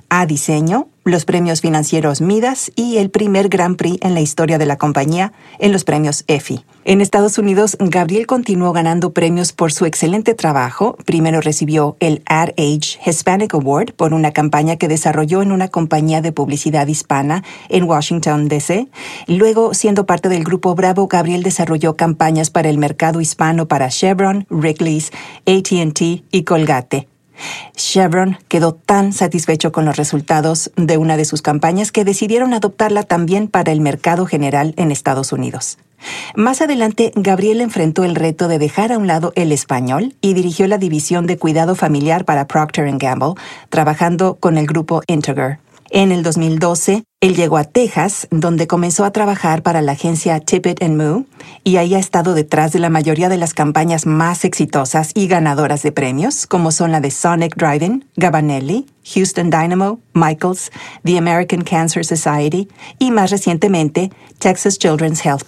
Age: 50-69